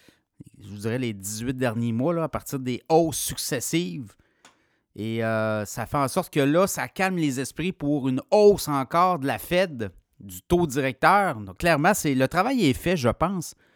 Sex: male